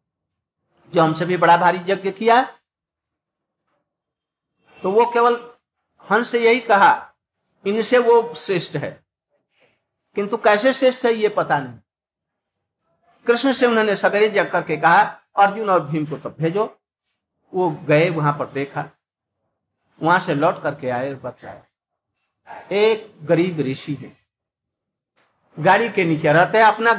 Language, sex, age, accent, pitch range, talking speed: Hindi, male, 60-79, native, 150-215 Hz, 135 wpm